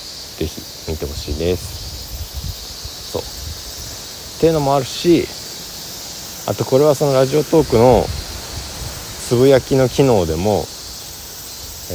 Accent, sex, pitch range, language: native, male, 80-100 Hz, Japanese